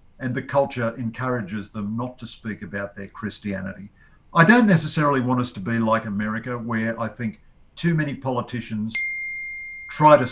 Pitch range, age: 105-145 Hz, 50-69